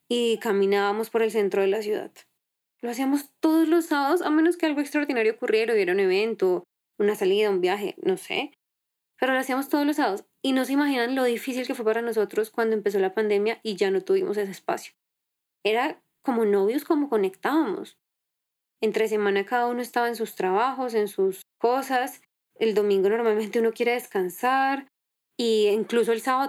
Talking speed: 180 wpm